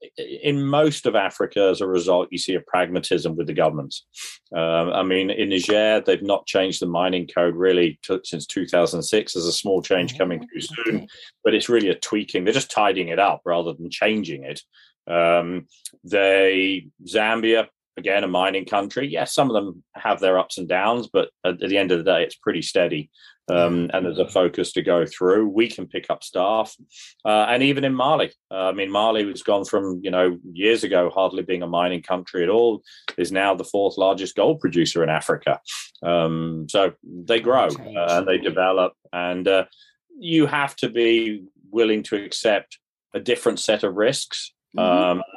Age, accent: 30-49, British